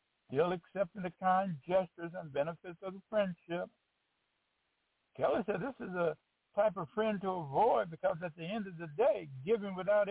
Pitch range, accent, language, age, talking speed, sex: 170-210 Hz, American, English, 60-79, 170 wpm, male